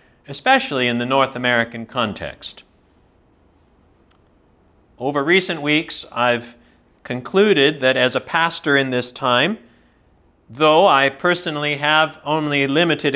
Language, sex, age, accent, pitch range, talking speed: English, male, 50-69, American, 125-175 Hz, 110 wpm